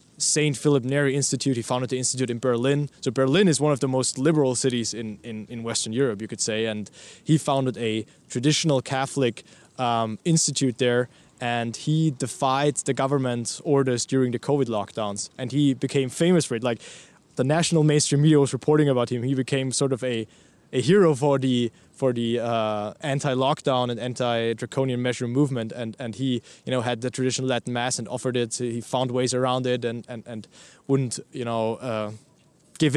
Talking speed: 190 wpm